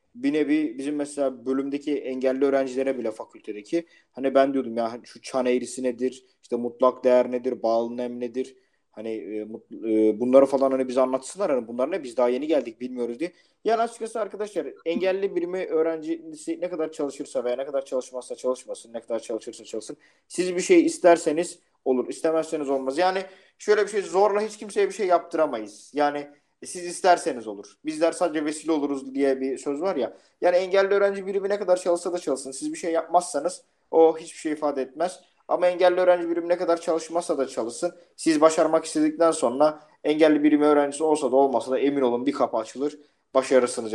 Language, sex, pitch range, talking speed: Turkish, male, 130-175 Hz, 180 wpm